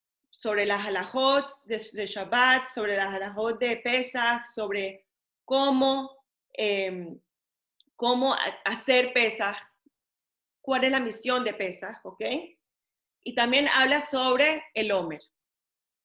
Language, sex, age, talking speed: English, female, 30-49, 110 wpm